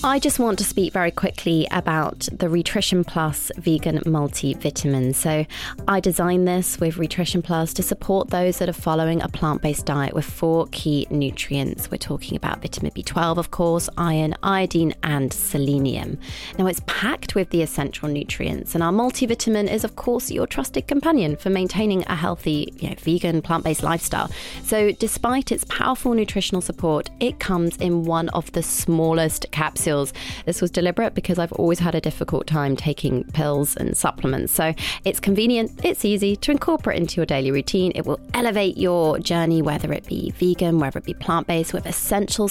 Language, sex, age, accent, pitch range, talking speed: English, female, 30-49, British, 160-205 Hz, 170 wpm